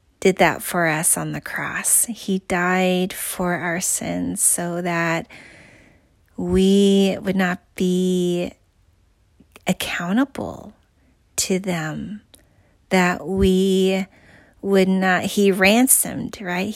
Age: 30-49